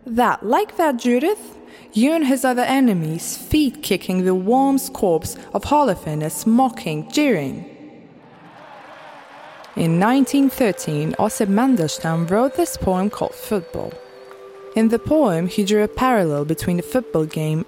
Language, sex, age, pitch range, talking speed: English, female, 20-39, 165-250 Hz, 130 wpm